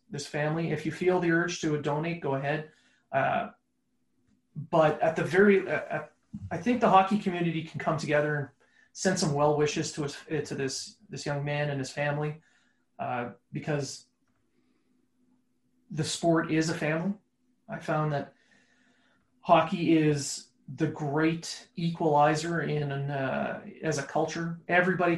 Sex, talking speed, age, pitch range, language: male, 150 wpm, 30-49, 145-170 Hz, English